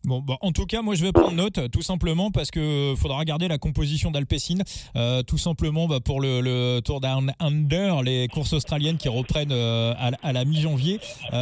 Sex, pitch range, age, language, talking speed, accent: male, 130-170 Hz, 20-39, French, 210 wpm, French